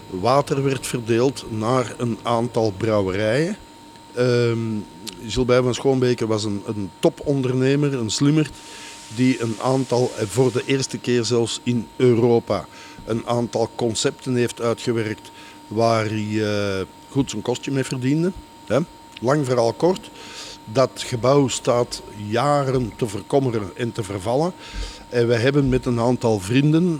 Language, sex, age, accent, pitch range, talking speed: Dutch, male, 60-79, Dutch, 110-130 Hz, 135 wpm